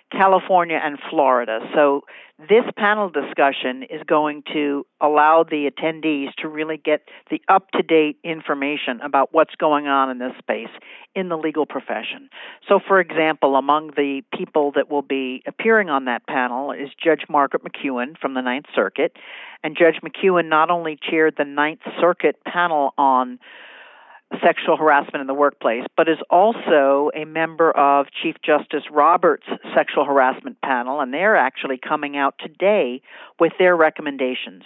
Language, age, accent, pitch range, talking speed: English, 50-69, American, 140-165 Hz, 150 wpm